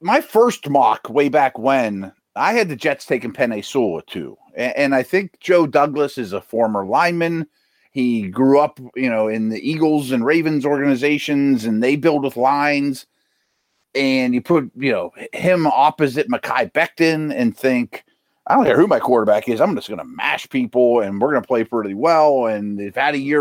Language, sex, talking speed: English, male, 195 wpm